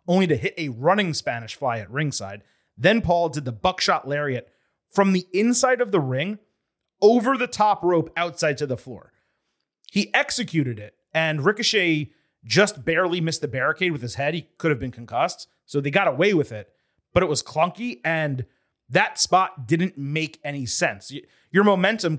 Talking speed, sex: 180 wpm, male